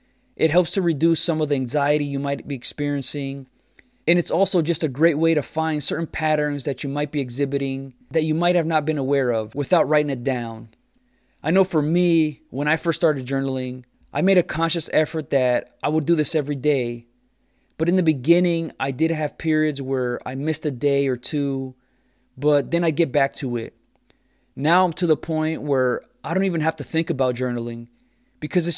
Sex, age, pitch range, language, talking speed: male, 20-39, 135-165 Hz, English, 205 wpm